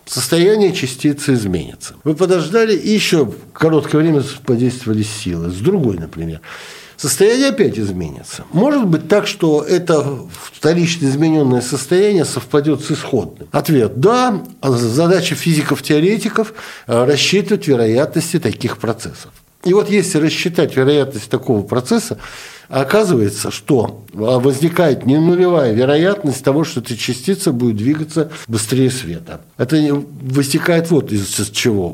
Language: Russian